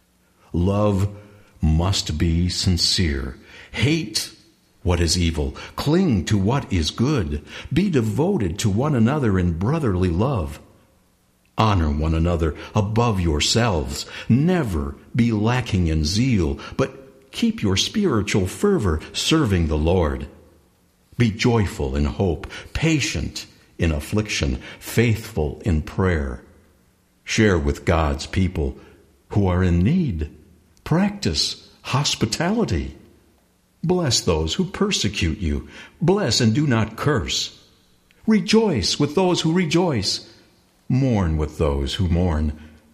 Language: English